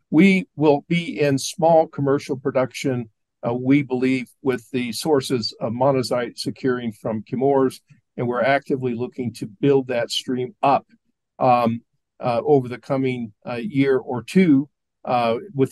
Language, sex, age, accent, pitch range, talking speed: English, male, 50-69, American, 120-145 Hz, 145 wpm